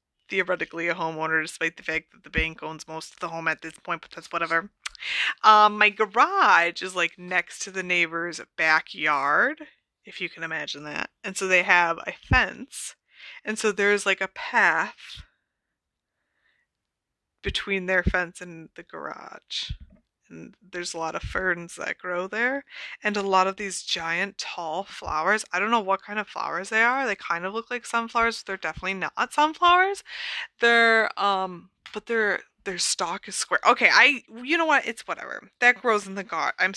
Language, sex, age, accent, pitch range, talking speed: English, female, 20-39, American, 170-235 Hz, 180 wpm